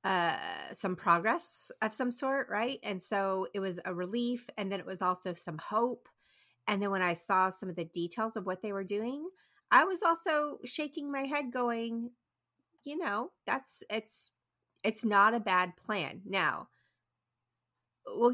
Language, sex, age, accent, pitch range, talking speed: English, female, 30-49, American, 170-225 Hz, 170 wpm